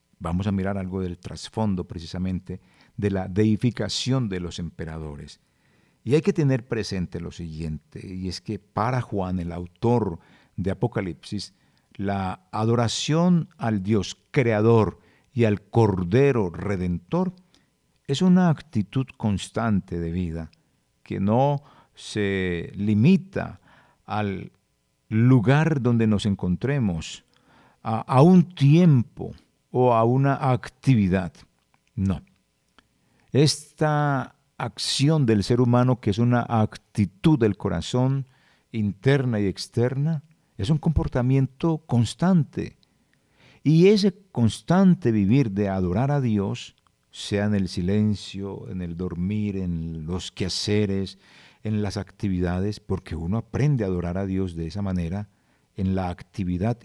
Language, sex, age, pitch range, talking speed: Spanish, male, 50-69, 95-130 Hz, 120 wpm